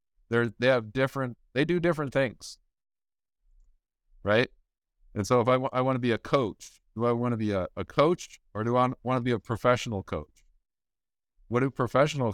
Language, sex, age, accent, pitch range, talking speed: English, male, 50-69, American, 100-125 Hz, 195 wpm